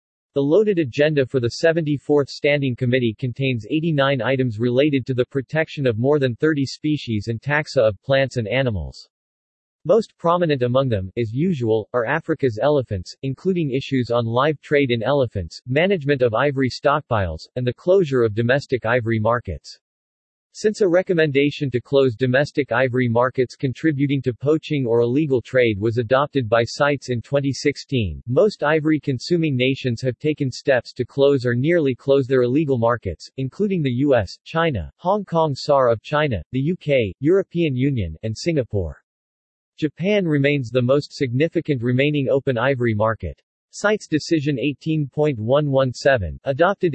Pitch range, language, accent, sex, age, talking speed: 120-150 Hz, English, American, male, 40-59, 145 wpm